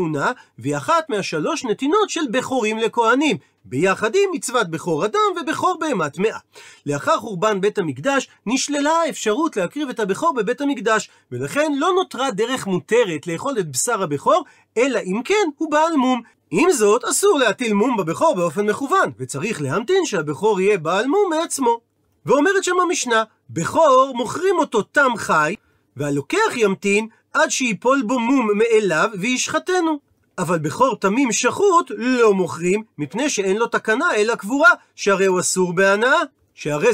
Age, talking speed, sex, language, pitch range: 40-59, 145 wpm, male, Hebrew, 190-310 Hz